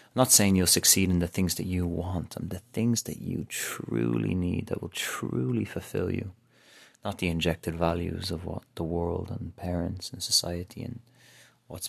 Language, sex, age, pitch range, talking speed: English, male, 30-49, 90-120 Hz, 180 wpm